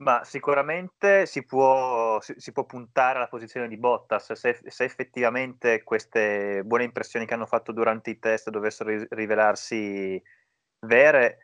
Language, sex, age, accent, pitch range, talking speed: Italian, male, 20-39, native, 105-125 Hz, 130 wpm